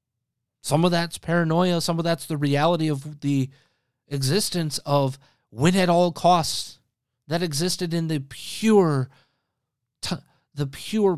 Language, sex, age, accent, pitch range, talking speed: English, male, 20-39, American, 125-165 Hz, 135 wpm